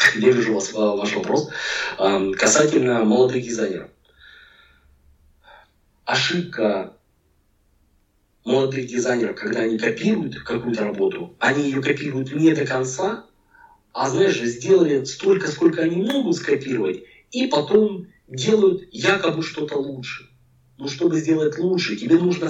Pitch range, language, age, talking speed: 115-185 Hz, Russian, 40-59, 110 wpm